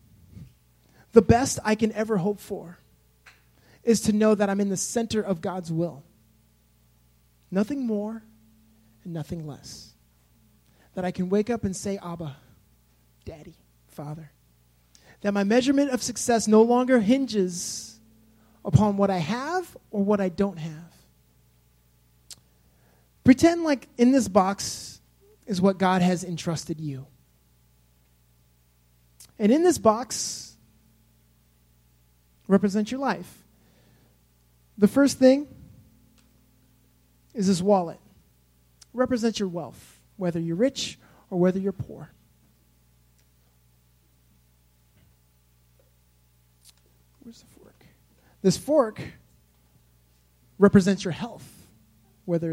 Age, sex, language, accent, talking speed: 30-49, male, English, American, 105 wpm